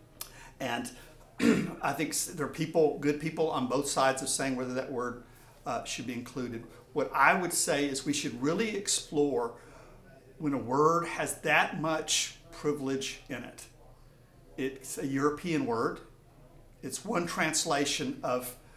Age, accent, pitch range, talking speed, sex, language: 50-69, American, 130-155 Hz, 145 wpm, male, English